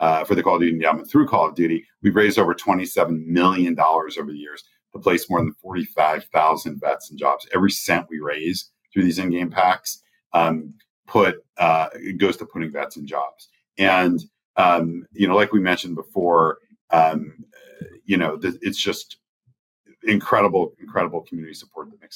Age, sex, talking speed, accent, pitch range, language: 40-59, male, 175 wpm, American, 80-110 Hz, English